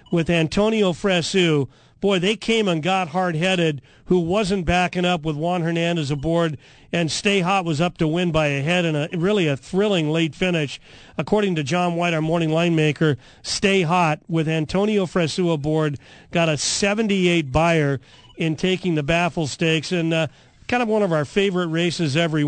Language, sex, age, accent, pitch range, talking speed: English, male, 40-59, American, 155-185 Hz, 180 wpm